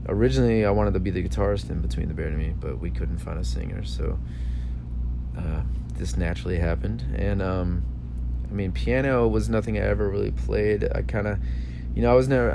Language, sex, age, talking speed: English, male, 30-49, 205 wpm